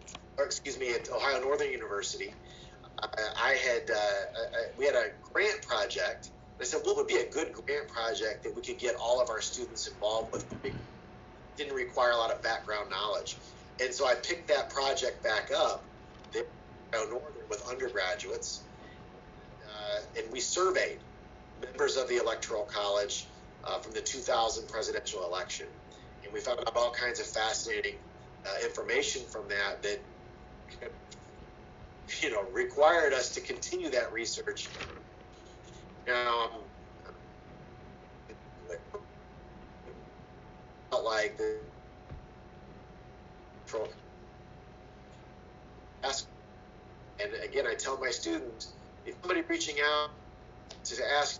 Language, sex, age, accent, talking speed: English, male, 40-59, American, 130 wpm